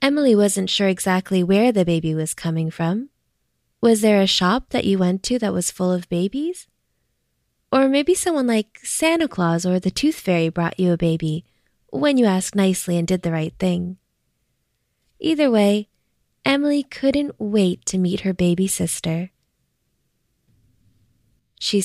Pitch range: 175-215 Hz